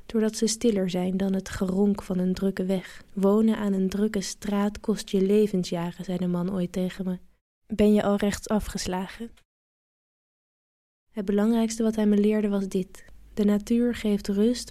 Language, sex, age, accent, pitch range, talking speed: English, female, 20-39, Dutch, 195-220 Hz, 165 wpm